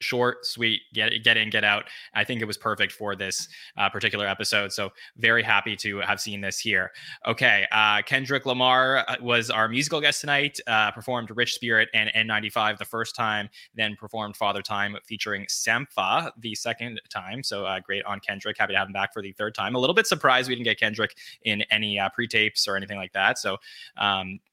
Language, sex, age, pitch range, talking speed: English, male, 20-39, 105-135 Hz, 205 wpm